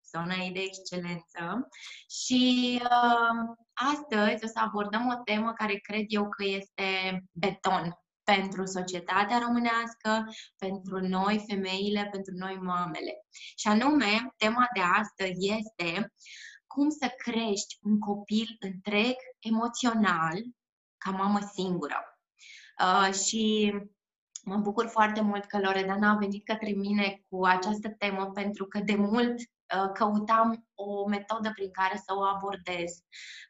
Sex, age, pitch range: female, 20-39, 195-230 Hz